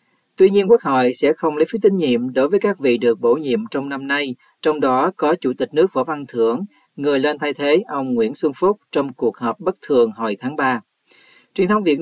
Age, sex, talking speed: 40-59, male, 240 wpm